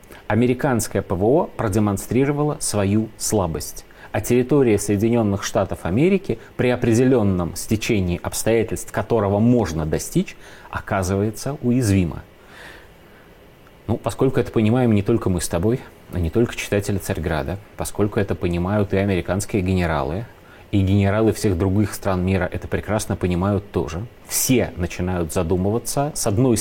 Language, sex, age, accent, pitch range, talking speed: Russian, male, 30-49, native, 95-125 Hz, 120 wpm